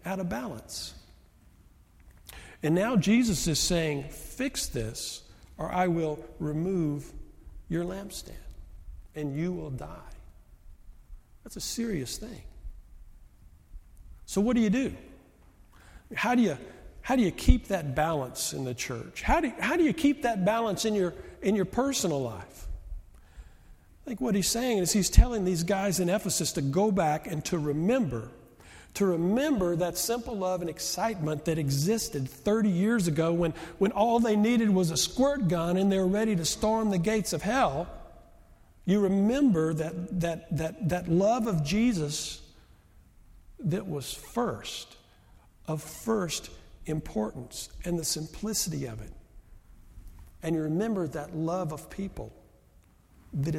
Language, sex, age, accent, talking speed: English, male, 50-69, American, 150 wpm